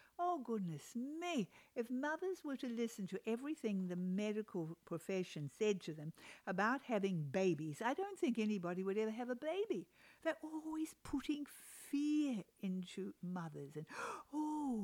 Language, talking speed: English, 145 wpm